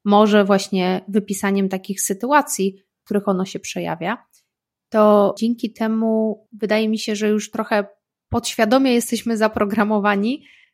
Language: Polish